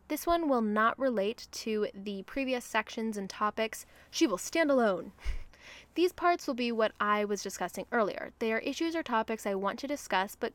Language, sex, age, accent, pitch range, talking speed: English, female, 10-29, American, 205-270 Hz, 195 wpm